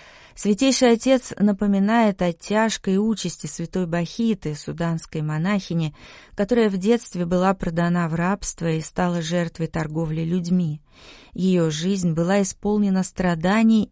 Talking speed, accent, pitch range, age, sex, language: 115 wpm, native, 170-210 Hz, 30-49, female, Russian